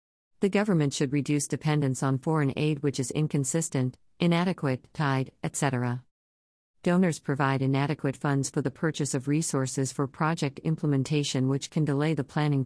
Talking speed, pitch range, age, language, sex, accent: 145 wpm, 130-150 Hz, 50-69, English, female, American